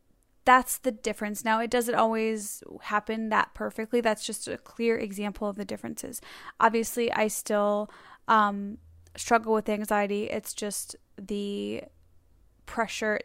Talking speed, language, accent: 130 wpm, English, American